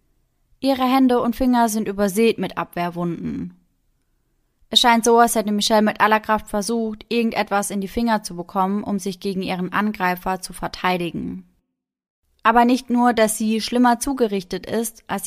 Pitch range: 185-220 Hz